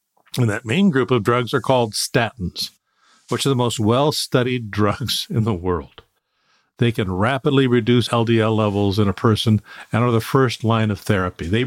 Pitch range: 105-130 Hz